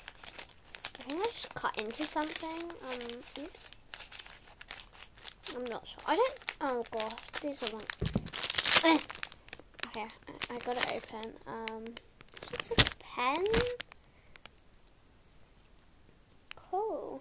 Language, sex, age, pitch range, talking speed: English, female, 10-29, 235-325 Hz, 100 wpm